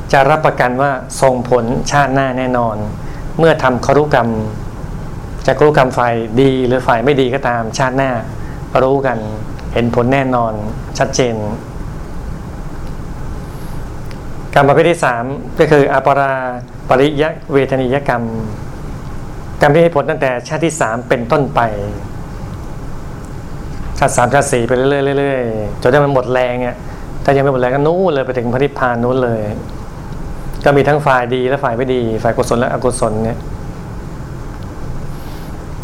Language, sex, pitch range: Thai, male, 120-140 Hz